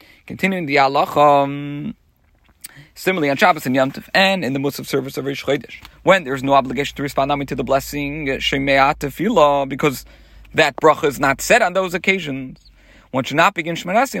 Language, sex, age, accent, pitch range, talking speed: English, male, 40-59, American, 145-215 Hz, 195 wpm